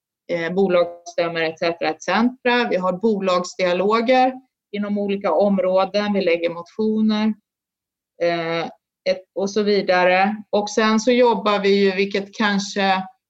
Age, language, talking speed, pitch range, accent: 30-49, Swedish, 115 wpm, 180-220 Hz, native